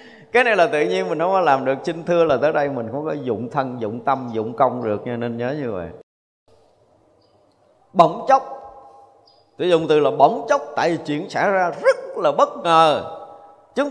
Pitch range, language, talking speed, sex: 135-225 Hz, Vietnamese, 205 wpm, male